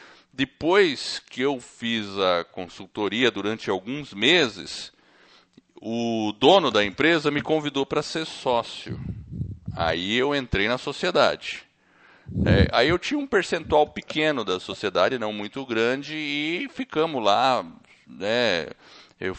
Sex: male